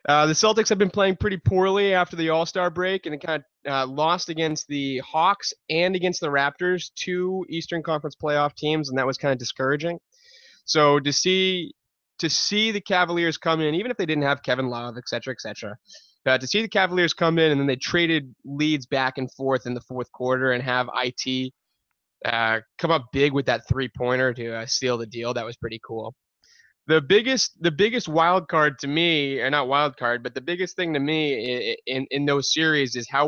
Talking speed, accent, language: 215 wpm, American, English